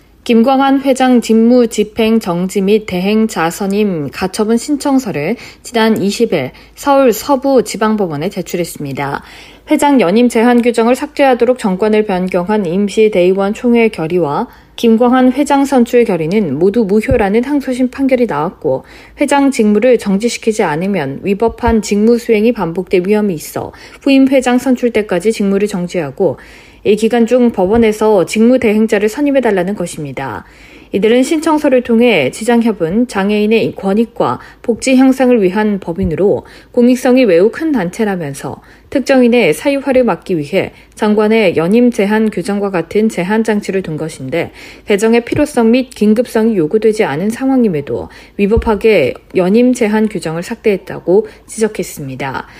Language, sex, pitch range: Korean, female, 190-240 Hz